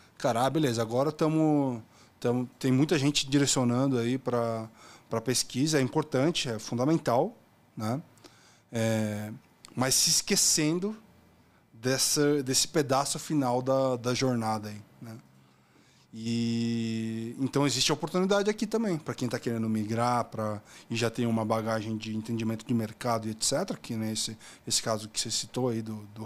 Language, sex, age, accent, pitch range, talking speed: Portuguese, male, 20-39, Brazilian, 110-140 Hz, 145 wpm